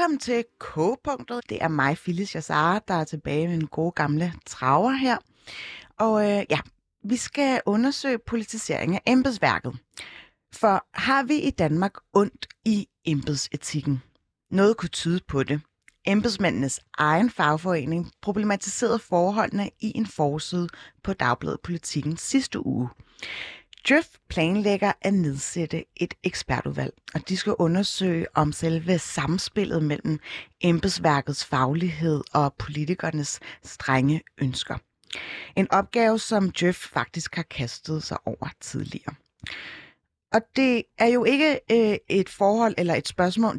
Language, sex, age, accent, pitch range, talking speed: Danish, female, 30-49, native, 155-210 Hz, 125 wpm